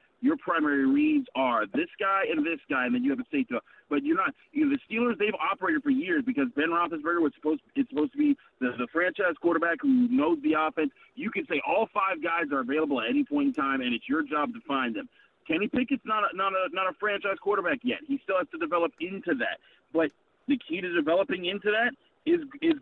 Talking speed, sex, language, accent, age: 235 wpm, male, English, American, 40-59